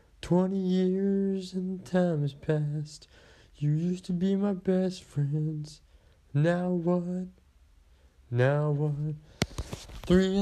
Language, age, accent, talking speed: English, 20-39, American, 105 wpm